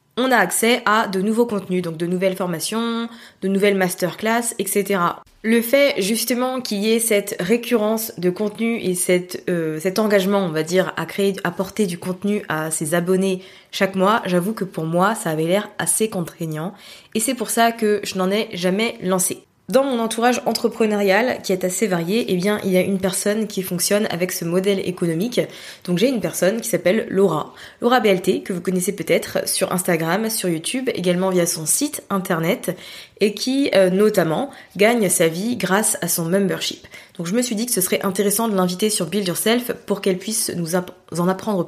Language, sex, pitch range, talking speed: French, female, 180-215 Hz, 195 wpm